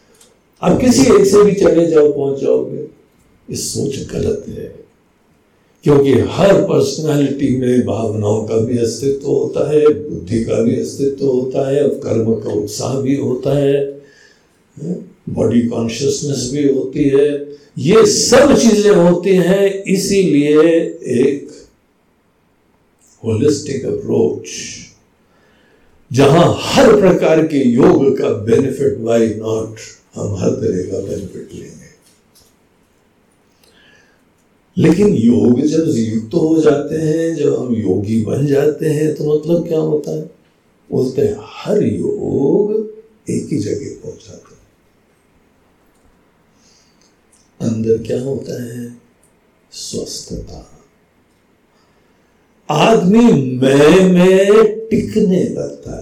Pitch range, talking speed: 125-195 Hz, 105 wpm